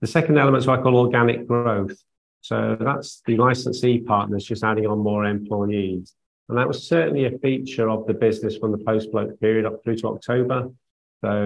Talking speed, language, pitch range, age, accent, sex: 200 wpm, English, 100-120 Hz, 40-59, British, male